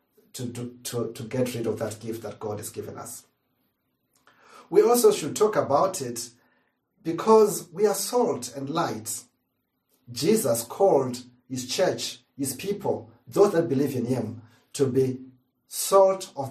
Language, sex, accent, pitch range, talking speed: English, male, South African, 120-145 Hz, 150 wpm